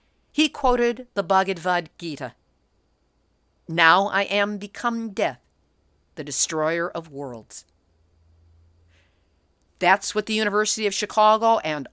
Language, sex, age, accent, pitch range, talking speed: English, female, 50-69, American, 165-225 Hz, 105 wpm